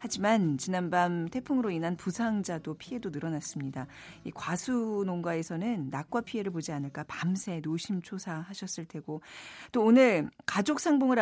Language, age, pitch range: Korean, 40-59, 160-245 Hz